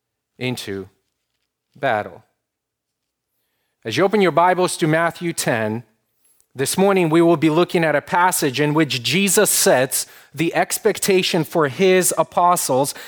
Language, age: English, 30-49